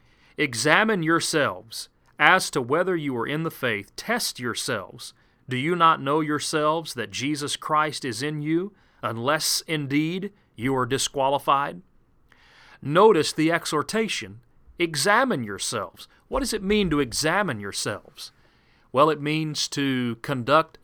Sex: male